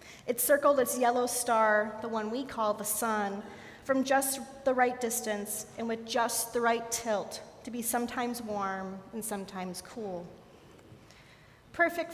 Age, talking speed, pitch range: 40-59, 150 wpm, 215-245 Hz